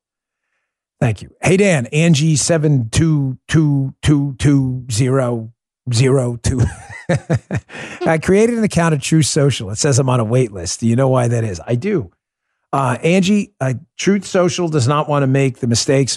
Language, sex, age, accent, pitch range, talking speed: English, male, 50-69, American, 105-145 Hz, 175 wpm